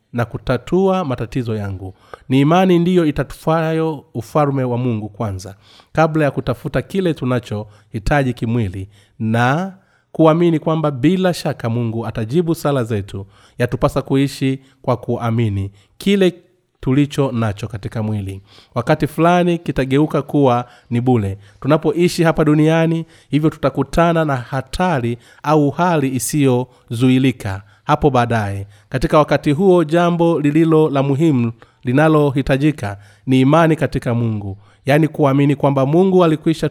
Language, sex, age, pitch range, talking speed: Swahili, male, 30-49, 120-155 Hz, 115 wpm